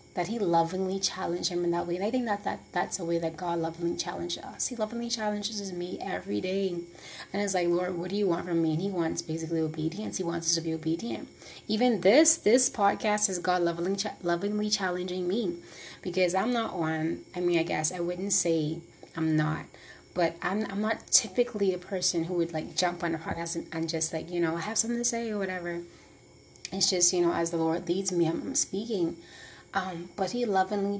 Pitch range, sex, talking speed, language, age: 170-210 Hz, female, 215 wpm, English, 30-49